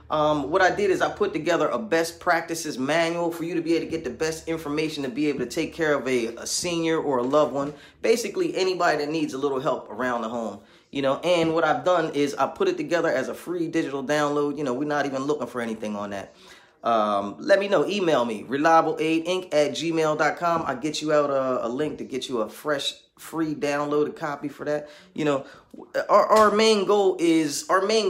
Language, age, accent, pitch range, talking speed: English, 20-39, American, 145-185 Hz, 230 wpm